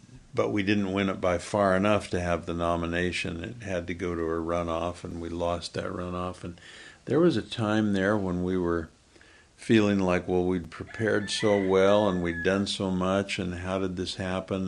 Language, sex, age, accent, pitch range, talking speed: English, male, 60-79, American, 90-105 Hz, 205 wpm